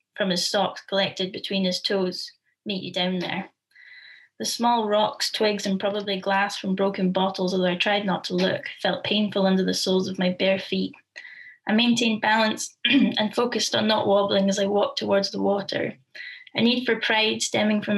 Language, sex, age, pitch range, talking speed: English, female, 10-29, 185-210 Hz, 185 wpm